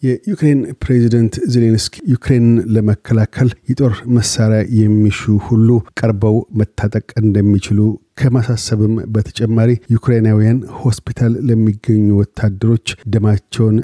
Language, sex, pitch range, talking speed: Amharic, male, 105-120 Hz, 80 wpm